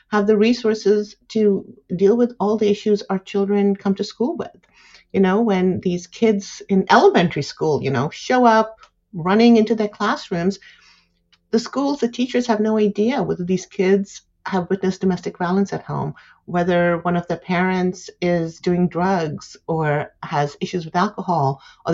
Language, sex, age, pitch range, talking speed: English, female, 50-69, 180-215 Hz, 165 wpm